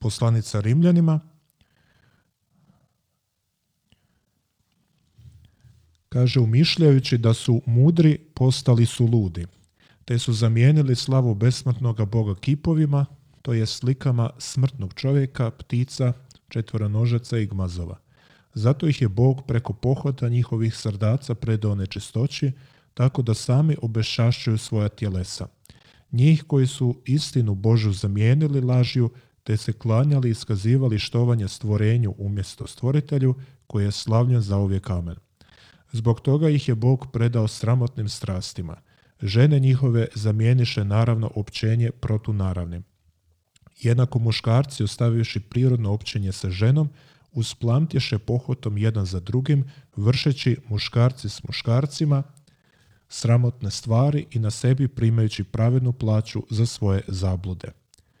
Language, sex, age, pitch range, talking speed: Croatian, male, 40-59, 110-130 Hz, 110 wpm